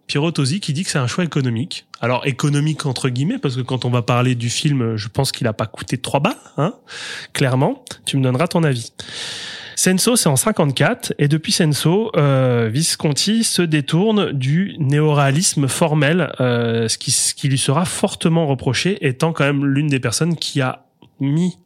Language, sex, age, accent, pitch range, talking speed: French, male, 20-39, French, 125-160 Hz, 185 wpm